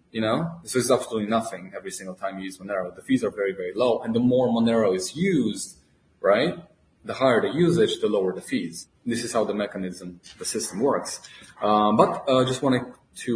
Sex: male